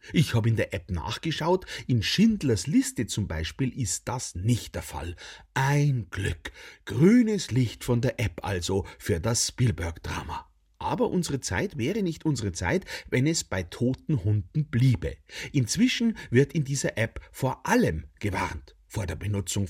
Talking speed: 155 wpm